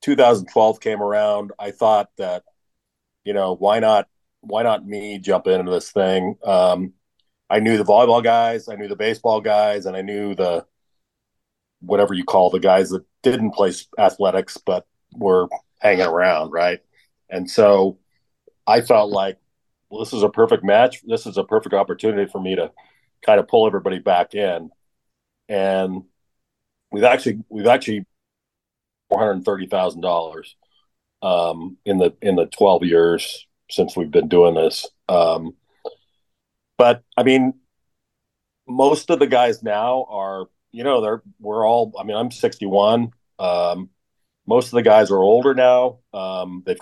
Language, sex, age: English, male, 40-59